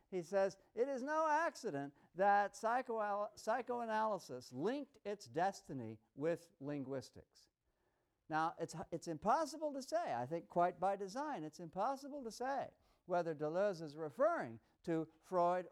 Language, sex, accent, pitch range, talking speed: English, male, American, 145-205 Hz, 130 wpm